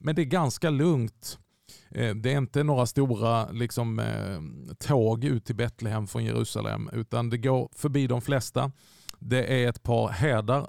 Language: Swedish